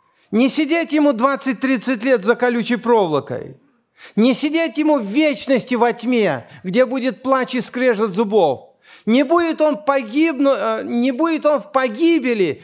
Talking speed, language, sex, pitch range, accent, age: 145 wpm, Russian, male, 210-270 Hz, native, 50-69